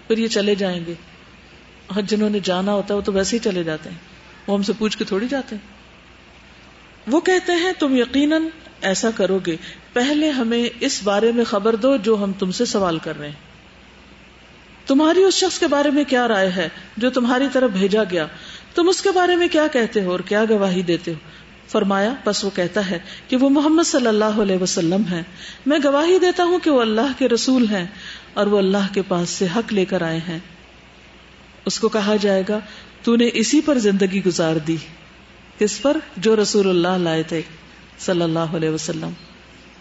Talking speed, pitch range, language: 190 wpm, 180-260 Hz, Urdu